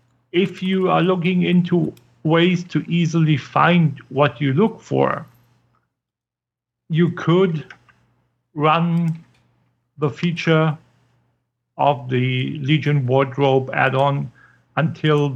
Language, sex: English, male